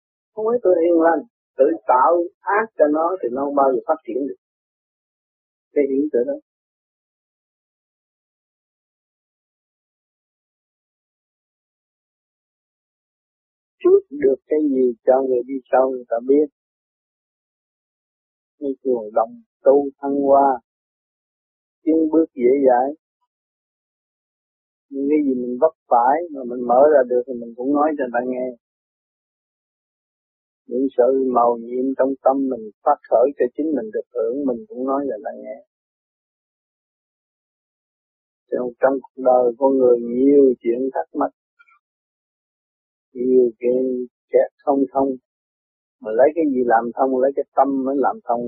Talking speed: 130 wpm